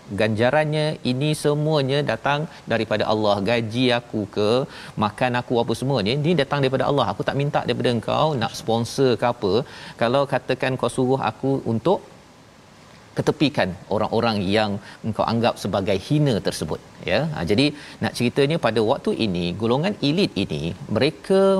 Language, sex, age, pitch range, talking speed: Malayalam, male, 40-59, 110-140 Hz, 140 wpm